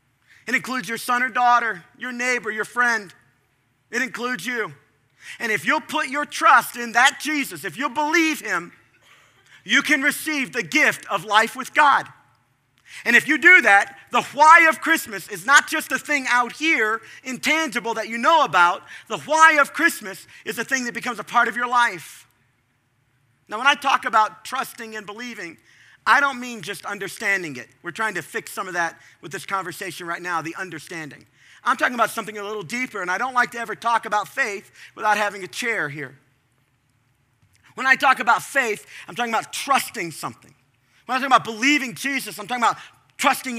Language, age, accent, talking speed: English, 40-59, American, 190 wpm